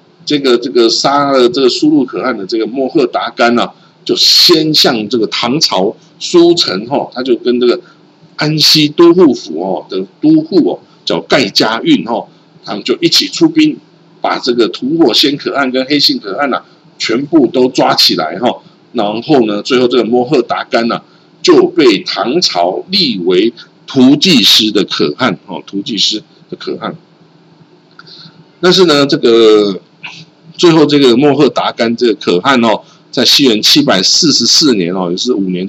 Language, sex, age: Chinese, male, 50-69